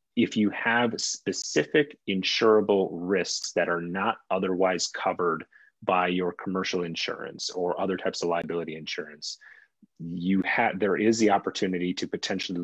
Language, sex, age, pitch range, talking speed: English, male, 30-49, 90-105 Hz, 140 wpm